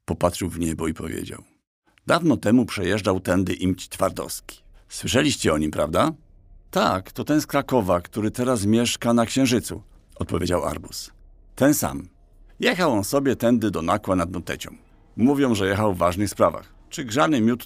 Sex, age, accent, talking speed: male, 50-69, native, 155 wpm